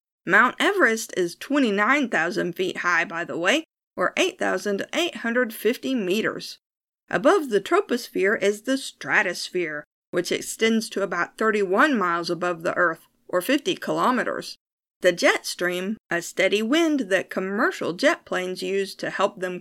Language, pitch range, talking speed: English, 190-270 Hz, 135 wpm